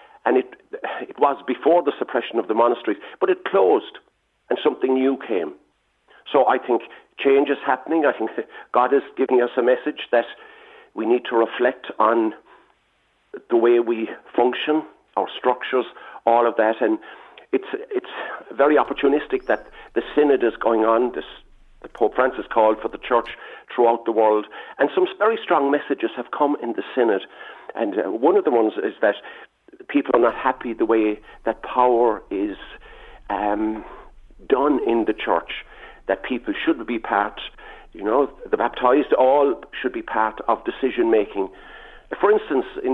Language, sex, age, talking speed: English, male, 50-69, 165 wpm